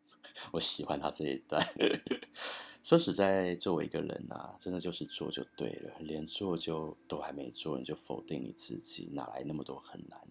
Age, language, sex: 30-49, Chinese, male